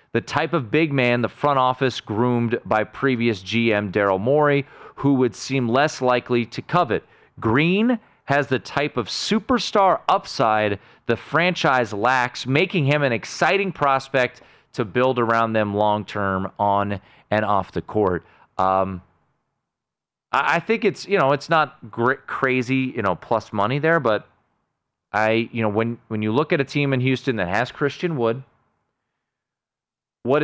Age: 30-49